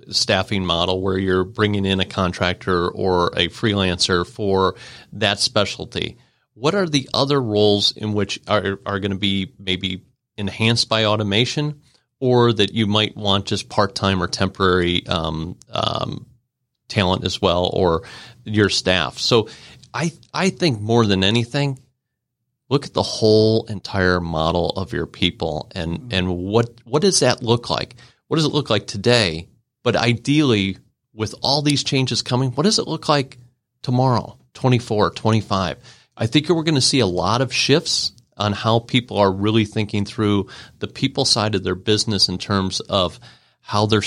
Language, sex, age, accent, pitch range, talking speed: English, male, 40-59, American, 95-125 Hz, 165 wpm